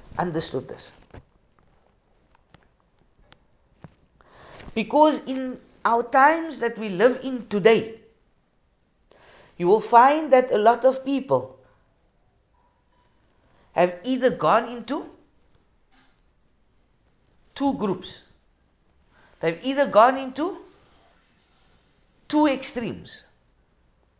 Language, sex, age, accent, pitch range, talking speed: English, female, 50-69, Indian, 190-265 Hz, 75 wpm